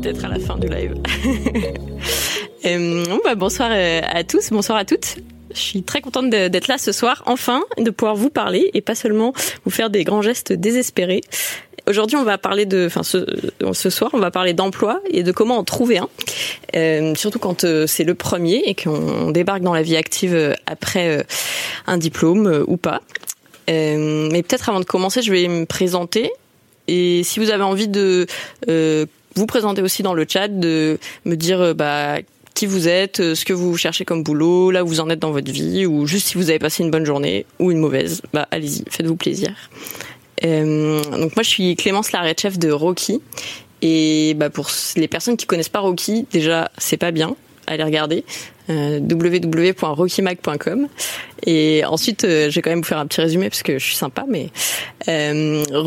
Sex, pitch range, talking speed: female, 160-205 Hz, 195 wpm